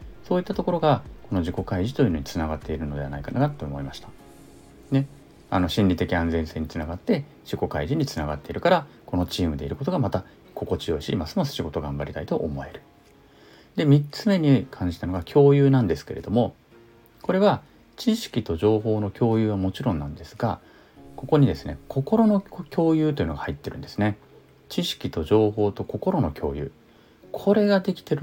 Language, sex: Japanese, male